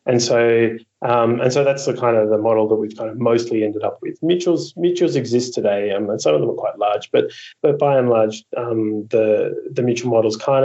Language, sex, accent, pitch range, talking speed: English, male, Australian, 110-140 Hz, 235 wpm